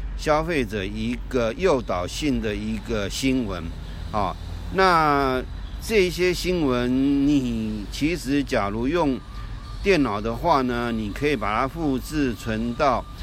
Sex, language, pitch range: male, Chinese, 110-145 Hz